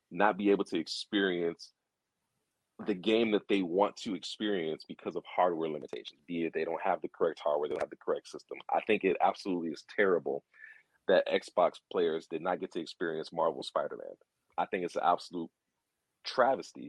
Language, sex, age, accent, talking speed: English, male, 40-59, American, 180 wpm